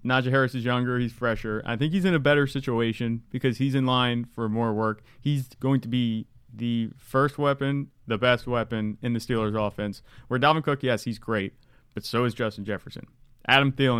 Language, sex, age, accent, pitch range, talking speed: English, male, 30-49, American, 105-130 Hz, 200 wpm